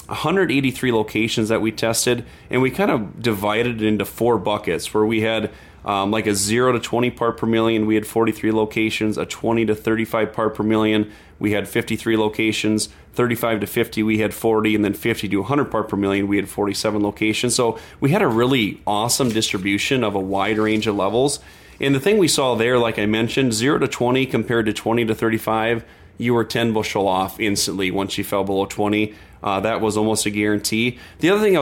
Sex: male